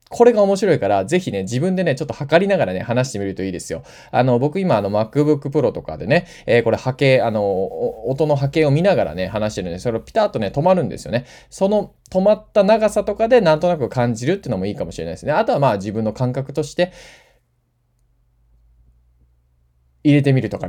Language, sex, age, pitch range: Japanese, male, 20-39, 120-185 Hz